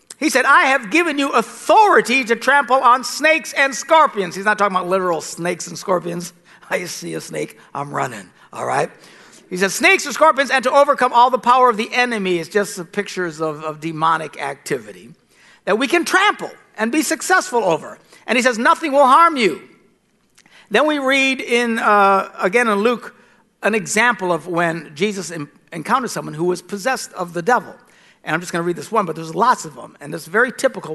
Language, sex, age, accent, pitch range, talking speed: English, male, 60-79, American, 180-280 Hz, 200 wpm